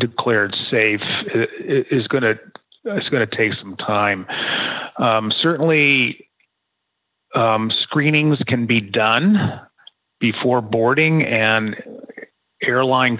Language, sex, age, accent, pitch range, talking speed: English, male, 40-59, American, 110-125 Hz, 100 wpm